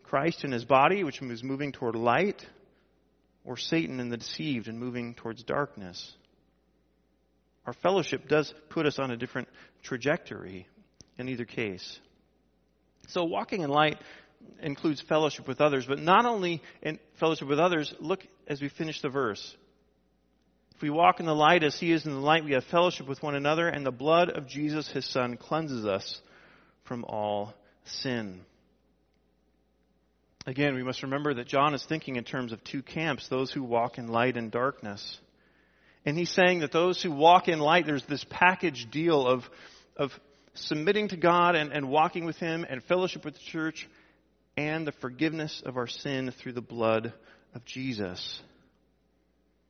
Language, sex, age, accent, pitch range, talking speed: English, male, 40-59, American, 115-155 Hz, 170 wpm